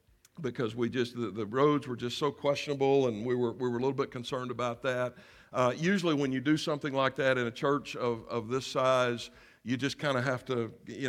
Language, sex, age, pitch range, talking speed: English, male, 60-79, 125-150 Hz, 235 wpm